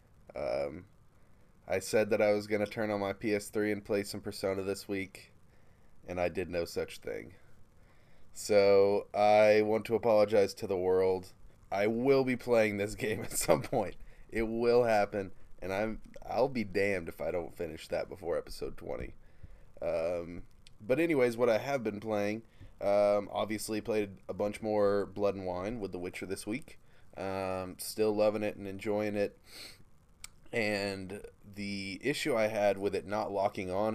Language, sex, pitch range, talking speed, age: English, male, 95-110 Hz, 175 wpm, 20-39